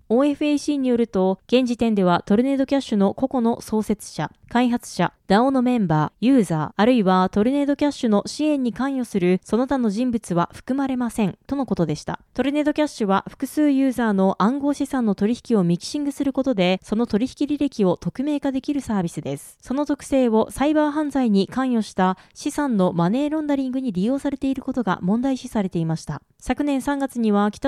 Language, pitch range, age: Japanese, 195-275 Hz, 20-39